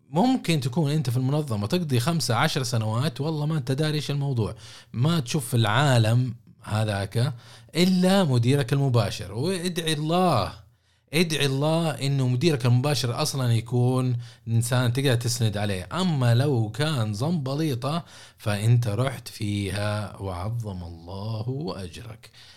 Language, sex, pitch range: Arabic, male, 105-150 Hz